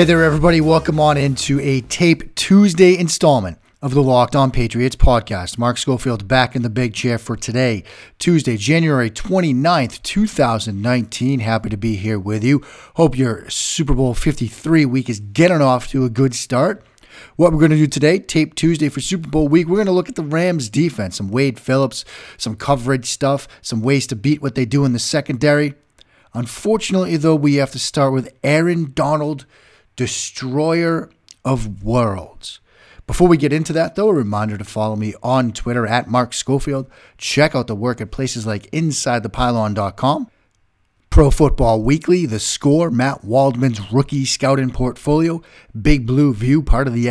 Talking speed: 175 wpm